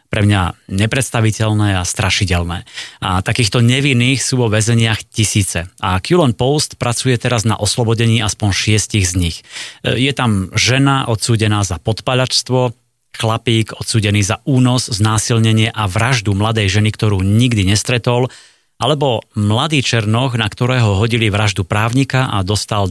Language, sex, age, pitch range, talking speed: Slovak, male, 30-49, 105-120 Hz, 135 wpm